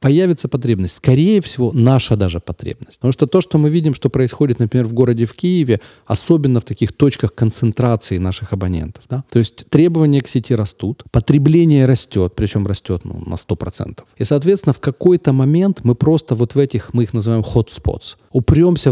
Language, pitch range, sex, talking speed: Ukrainian, 110-145 Hz, male, 180 wpm